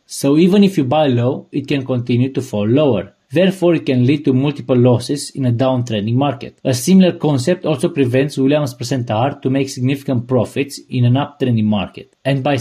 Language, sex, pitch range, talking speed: English, male, 125-160 Hz, 190 wpm